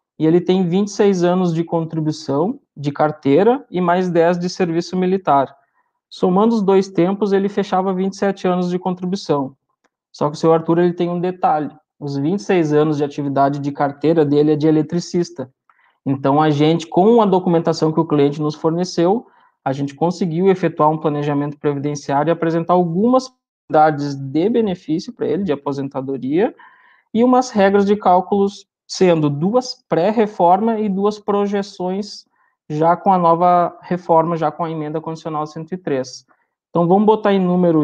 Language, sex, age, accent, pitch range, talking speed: Portuguese, male, 20-39, Brazilian, 150-195 Hz, 160 wpm